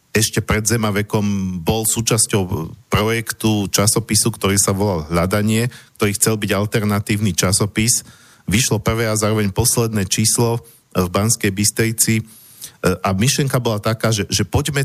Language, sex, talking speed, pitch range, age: Slovak, male, 130 wpm, 100-115 Hz, 40-59